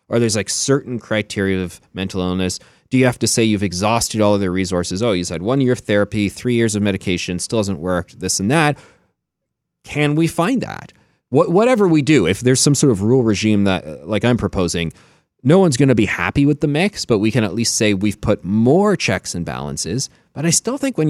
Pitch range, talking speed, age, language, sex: 95-135 Hz, 230 wpm, 30-49, English, male